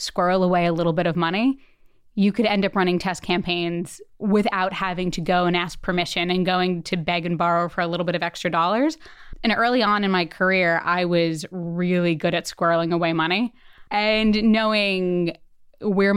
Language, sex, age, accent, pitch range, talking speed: English, female, 20-39, American, 170-195 Hz, 190 wpm